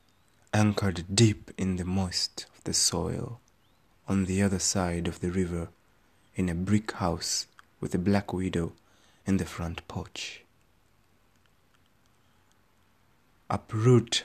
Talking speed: 120 wpm